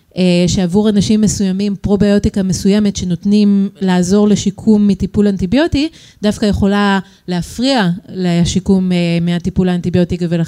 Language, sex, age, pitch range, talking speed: Hebrew, female, 30-49, 185-230 Hz, 95 wpm